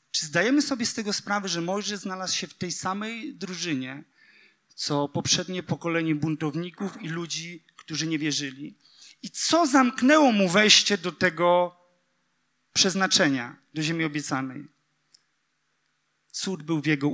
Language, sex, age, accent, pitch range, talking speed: Polish, male, 40-59, native, 180-235 Hz, 135 wpm